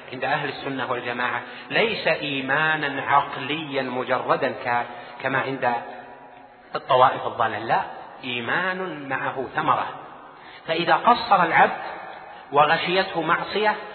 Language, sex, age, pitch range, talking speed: Arabic, male, 40-59, 125-165 Hz, 90 wpm